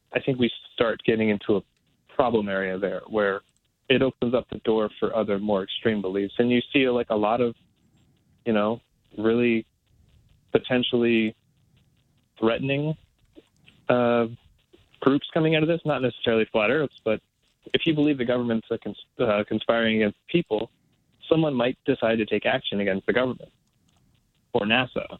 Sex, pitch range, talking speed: male, 105-130 Hz, 150 wpm